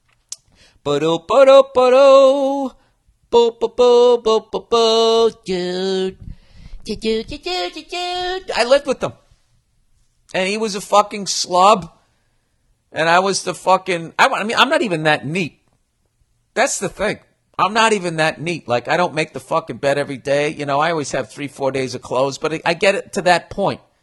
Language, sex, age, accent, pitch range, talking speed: English, male, 50-69, American, 125-180 Hz, 140 wpm